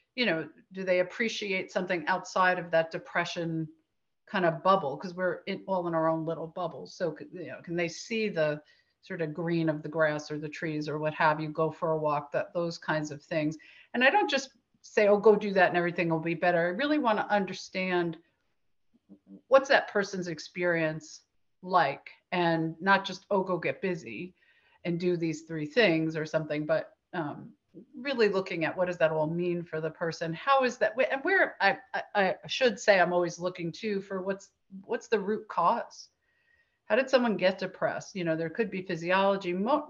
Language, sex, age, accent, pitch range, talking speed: English, female, 50-69, American, 160-195 Hz, 200 wpm